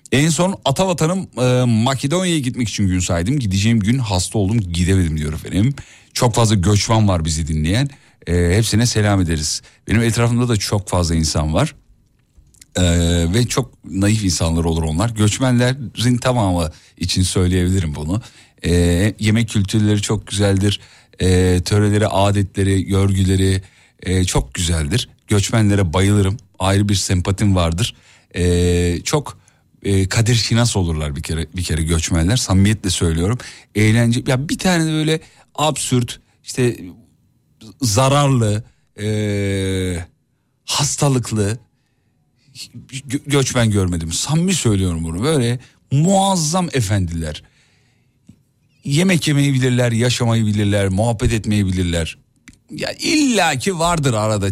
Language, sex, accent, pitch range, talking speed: Turkish, male, native, 95-125 Hz, 115 wpm